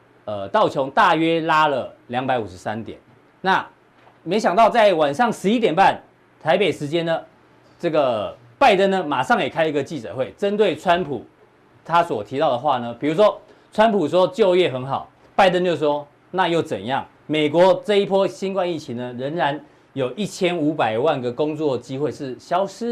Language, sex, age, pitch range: Chinese, male, 40-59, 130-185 Hz